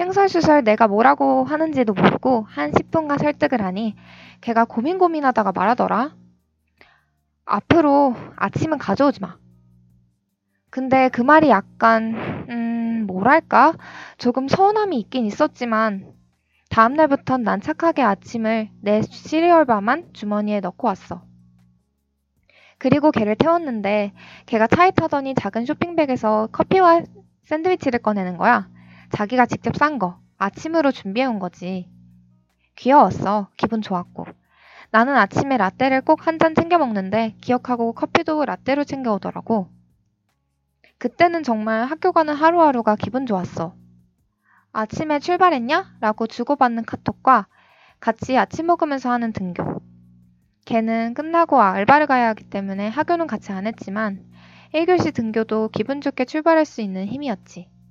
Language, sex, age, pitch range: Korean, female, 20-39, 190-285 Hz